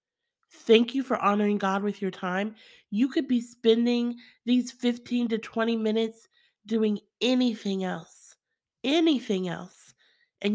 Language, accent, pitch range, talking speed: English, American, 200-255 Hz, 130 wpm